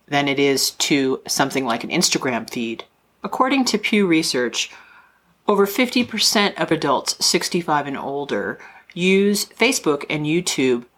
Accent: American